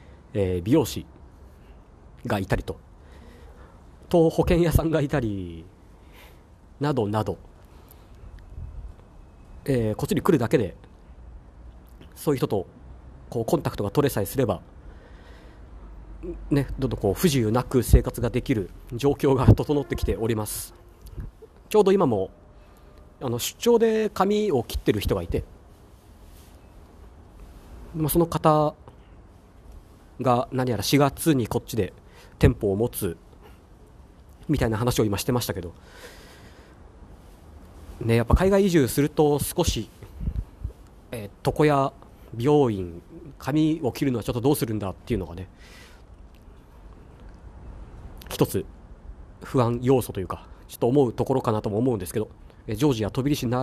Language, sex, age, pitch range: Japanese, male, 40-59, 85-130 Hz